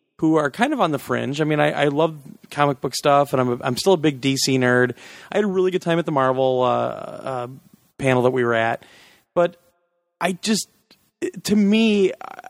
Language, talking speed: English, 220 wpm